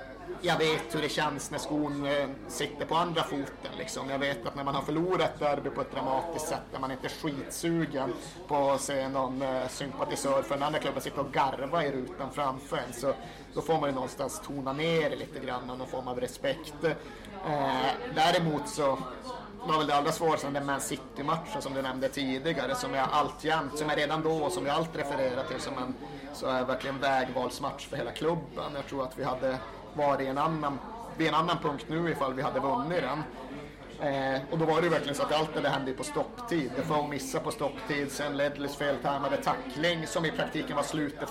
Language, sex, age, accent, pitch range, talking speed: Swedish, male, 30-49, native, 140-165 Hz, 210 wpm